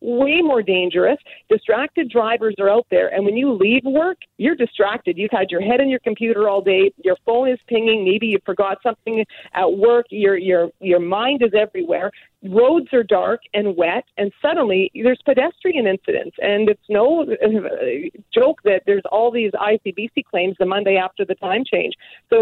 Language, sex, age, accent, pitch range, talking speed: English, female, 40-59, American, 200-270 Hz, 180 wpm